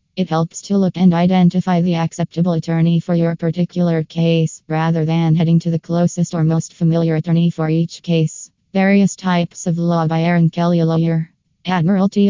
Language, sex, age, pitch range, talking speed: English, female, 20-39, 160-175 Hz, 170 wpm